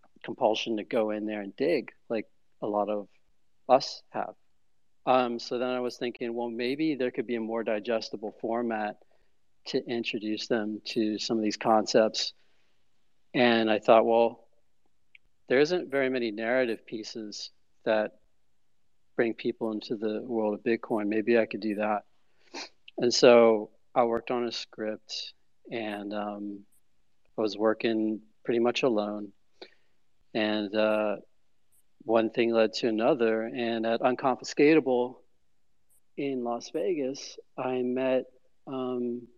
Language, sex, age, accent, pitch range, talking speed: English, male, 40-59, American, 105-120 Hz, 135 wpm